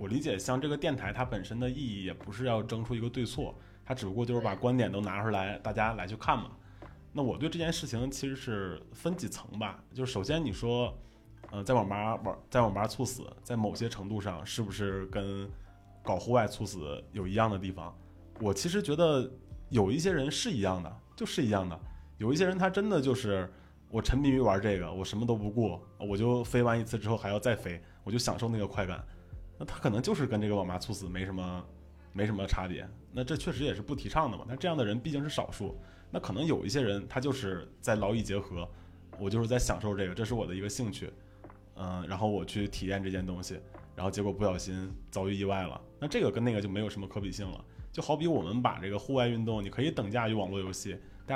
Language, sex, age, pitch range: Chinese, male, 20-39, 95-120 Hz